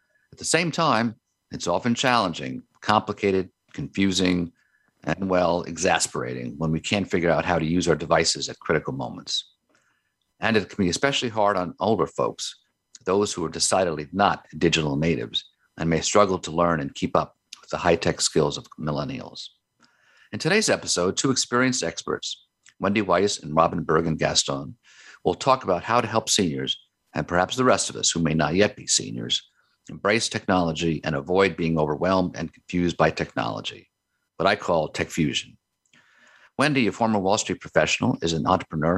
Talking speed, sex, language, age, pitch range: 170 wpm, male, English, 50-69, 80-95 Hz